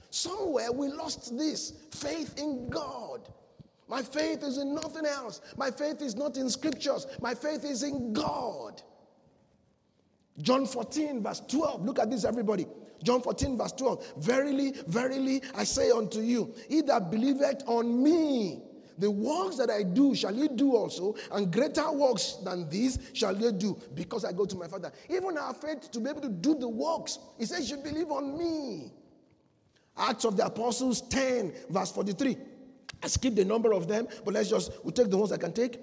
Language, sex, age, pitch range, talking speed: English, male, 50-69, 210-285 Hz, 185 wpm